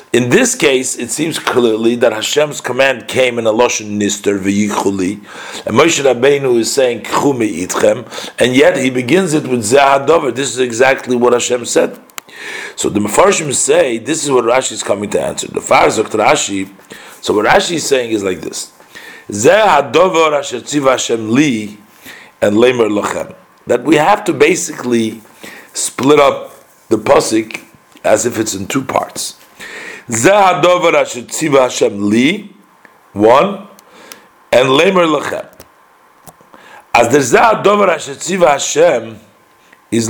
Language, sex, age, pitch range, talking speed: English, male, 50-69, 120-160 Hz, 140 wpm